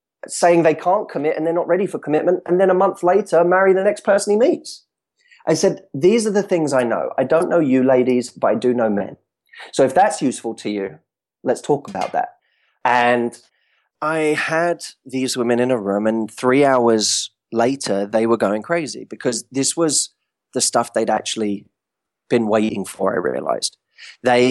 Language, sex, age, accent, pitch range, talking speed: English, male, 20-39, British, 110-155 Hz, 190 wpm